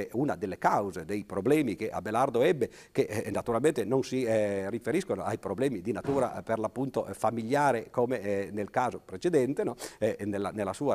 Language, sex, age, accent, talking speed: Italian, male, 50-69, native, 170 wpm